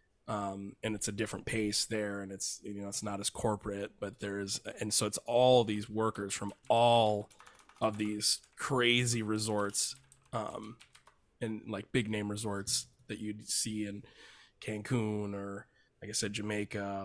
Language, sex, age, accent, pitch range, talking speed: English, male, 20-39, American, 105-115 Hz, 160 wpm